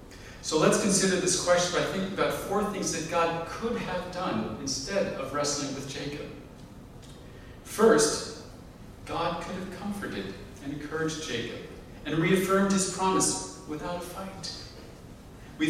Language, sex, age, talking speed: English, male, 40-59, 140 wpm